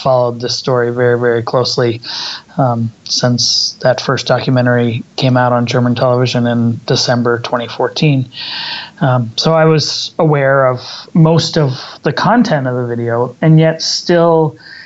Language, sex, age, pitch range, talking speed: English, male, 30-49, 125-155 Hz, 140 wpm